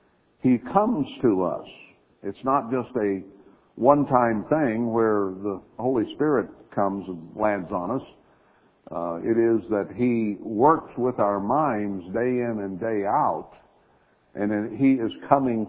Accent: American